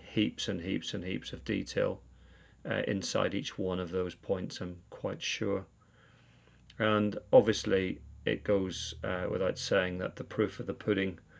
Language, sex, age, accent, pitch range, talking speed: English, male, 40-59, British, 95-110 Hz, 160 wpm